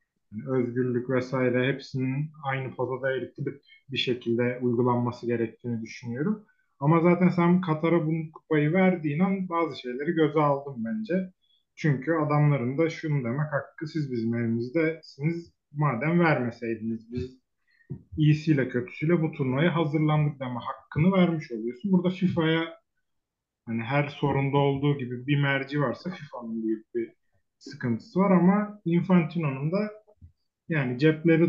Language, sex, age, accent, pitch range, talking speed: Turkish, male, 30-49, native, 125-165 Hz, 125 wpm